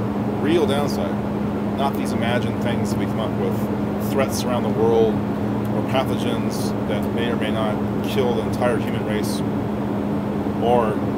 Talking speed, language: 140 wpm, English